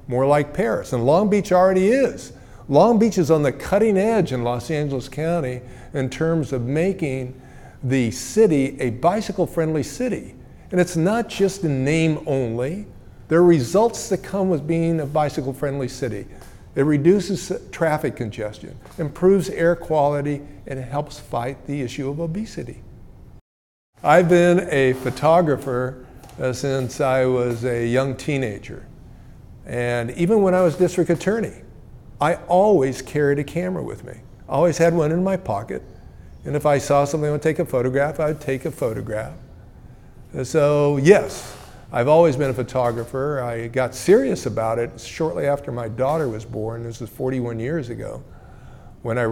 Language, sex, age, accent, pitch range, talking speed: English, male, 50-69, American, 125-165 Hz, 160 wpm